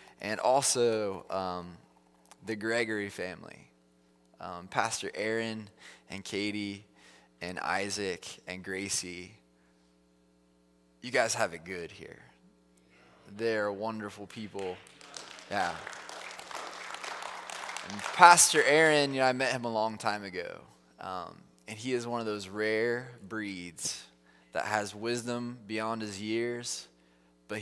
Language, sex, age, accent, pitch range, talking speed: English, male, 20-39, American, 90-120 Hz, 115 wpm